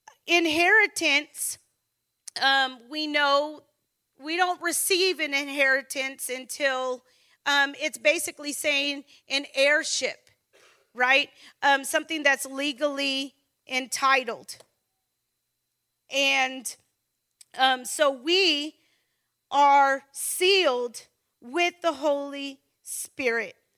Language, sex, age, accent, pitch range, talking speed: English, female, 40-59, American, 270-330 Hz, 80 wpm